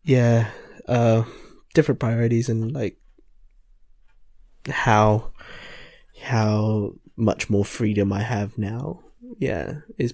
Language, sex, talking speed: English, male, 95 wpm